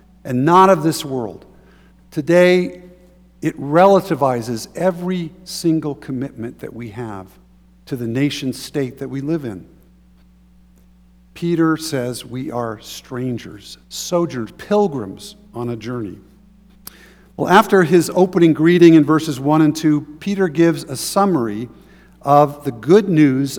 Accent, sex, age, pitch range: American, male, 50-69, 125-180 Hz